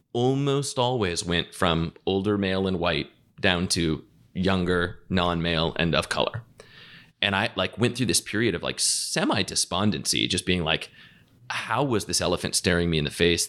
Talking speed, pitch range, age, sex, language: 170 wpm, 80-100 Hz, 30-49, male, English